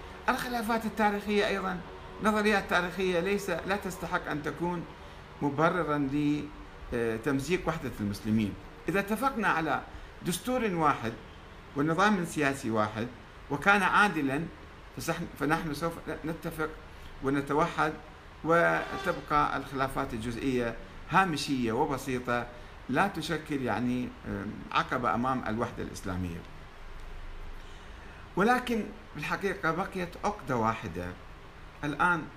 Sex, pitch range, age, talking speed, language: male, 105-165 Hz, 50-69, 85 wpm, Arabic